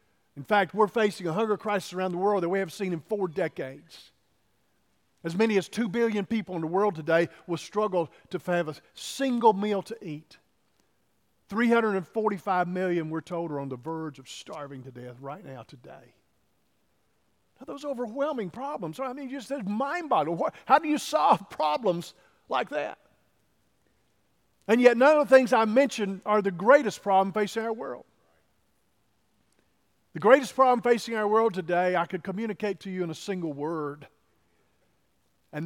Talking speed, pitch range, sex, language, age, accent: 165 wpm, 160-220 Hz, male, English, 50-69, American